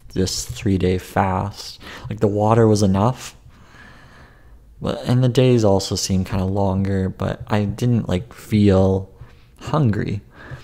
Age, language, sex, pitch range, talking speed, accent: 30-49, English, male, 95-120 Hz, 125 wpm, American